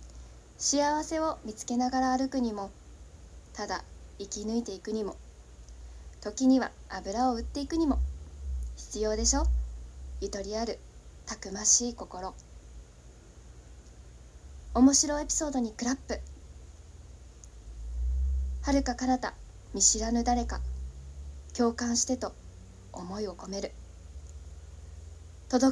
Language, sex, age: Japanese, female, 20-39